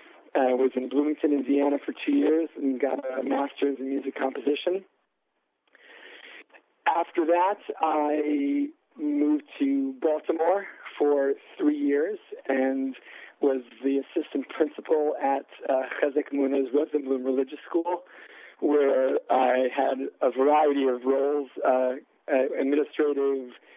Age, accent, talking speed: 50-69, American, 115 wpm